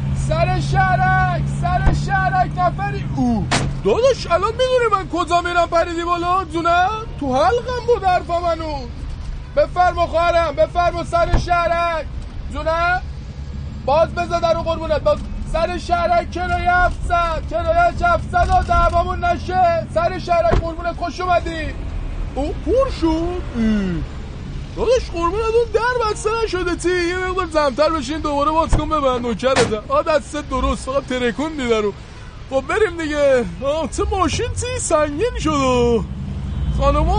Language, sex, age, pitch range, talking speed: Persian, male, 20-39, 225-350 Hz, 130 wpm